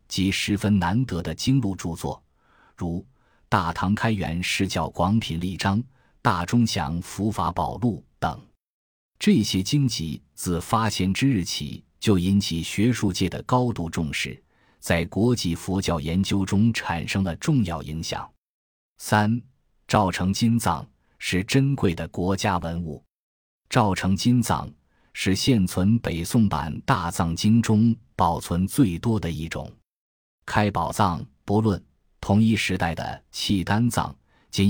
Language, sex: Chinese, male